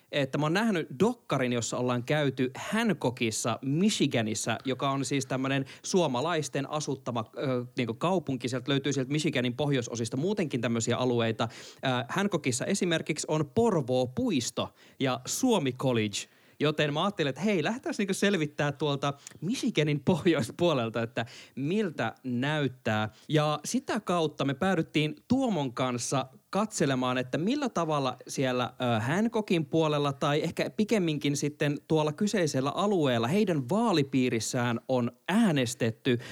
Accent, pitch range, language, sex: native, 125-180 Hz, Finnish, male